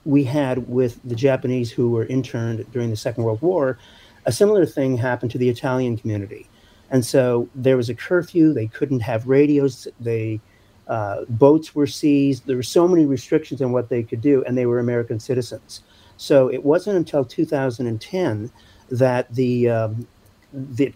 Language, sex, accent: English, male, American